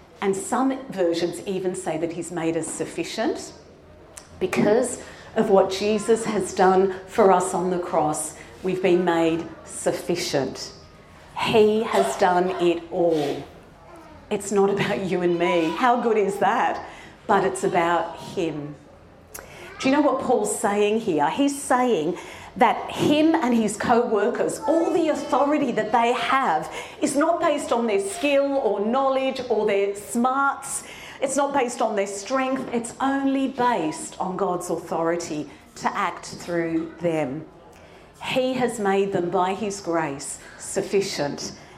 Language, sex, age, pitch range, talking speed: English, female, 50-69, 185-265 Hz, 140 wpm